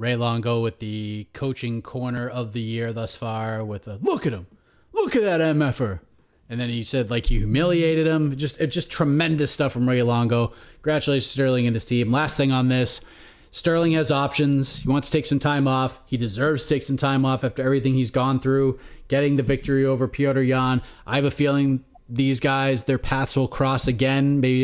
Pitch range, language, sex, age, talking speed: 130-155 Hz, English, male, 30-49, 205 wpm